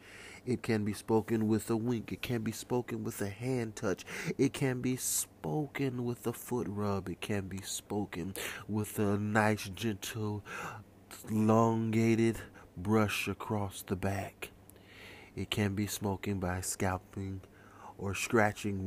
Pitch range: 95-110 Hz